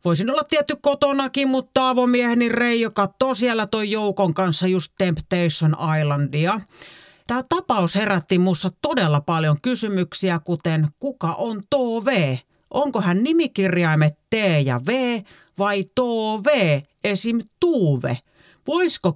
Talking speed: 115 wpm